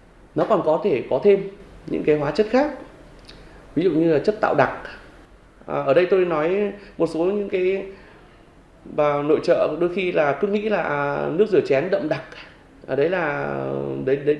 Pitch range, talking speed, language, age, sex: 130-195 Hz, 190 wpm, Vietnamese, 20-39, male